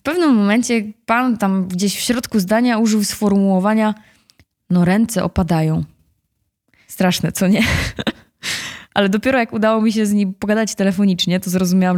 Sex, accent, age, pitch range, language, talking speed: female, native, 20-39, 175-210 Hz, Polish, 150 wpm